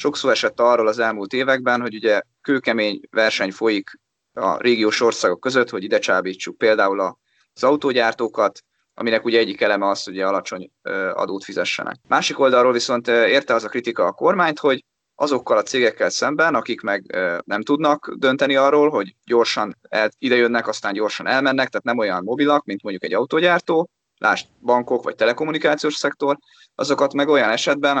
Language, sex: Hungarian, male